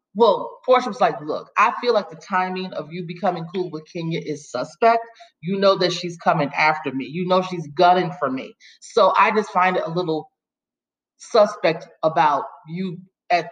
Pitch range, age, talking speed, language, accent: 165-215 Hz, 30-49, 185 wpm, English, American